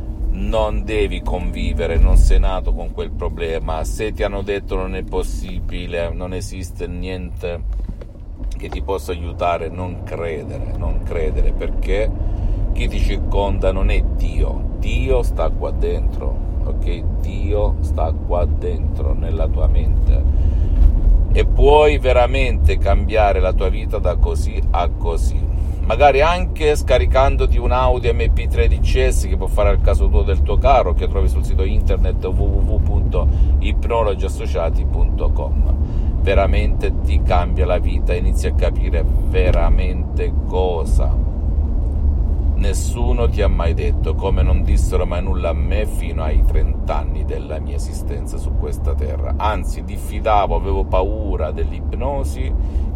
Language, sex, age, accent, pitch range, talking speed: Italian, male, 50-69, native, 70-90 Hz, 130 wpm